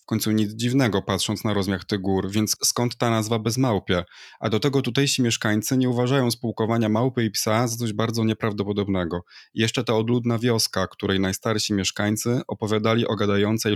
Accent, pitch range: native, 105-120 Hz